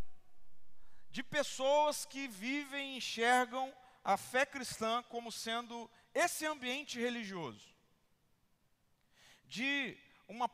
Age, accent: 40-59, Brazilian